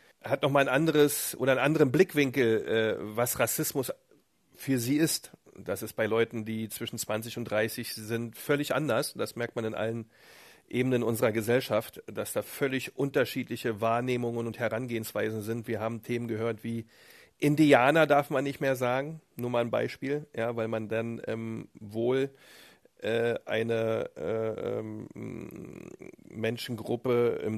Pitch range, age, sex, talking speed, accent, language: 115-140 Hz, 40-59, male, 145 wpm, German, German